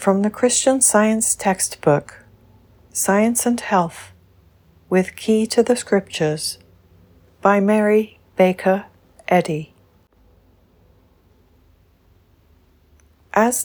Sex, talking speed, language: female, 80 wpm, English